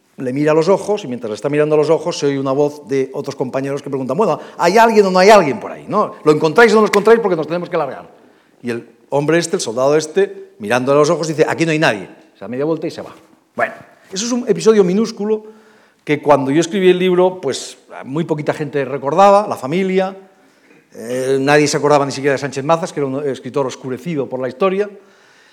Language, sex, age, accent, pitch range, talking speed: Spanish, male, 50-69, Spanish, 140-190 Hz, 240 wpm